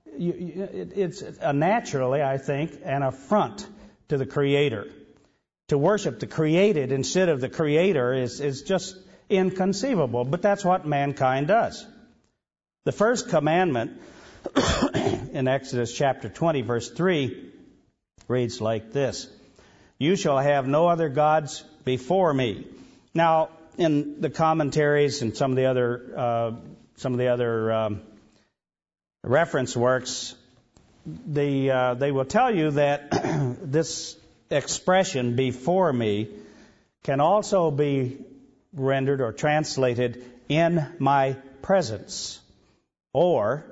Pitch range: 130-165 Hz